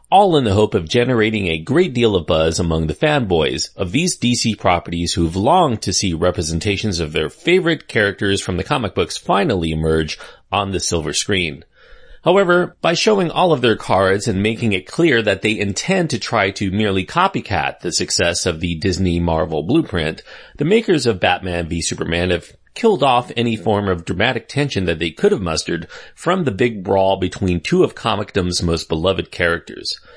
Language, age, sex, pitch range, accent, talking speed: English, 40-59, male, 90-130 Hz, American, 185 wpm